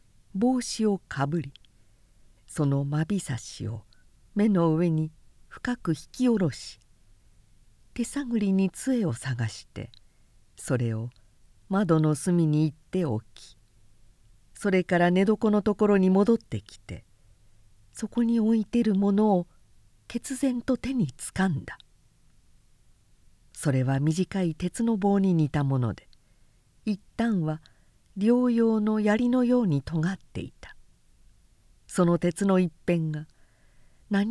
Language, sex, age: Japanese, female, 50-69